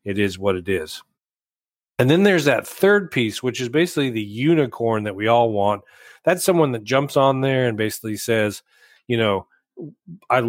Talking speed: 185 wpm